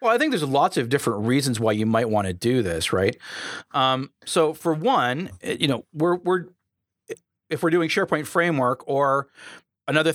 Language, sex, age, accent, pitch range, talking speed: English, male, 40-59, American, 125-160 Hz, 185 wpm